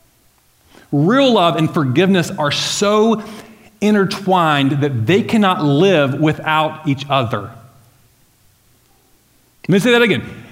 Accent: American